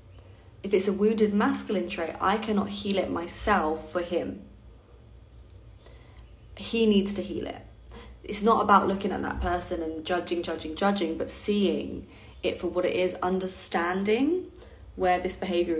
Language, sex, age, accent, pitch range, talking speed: English, female, 20-39, British, 165-200 Hz, 150 wpm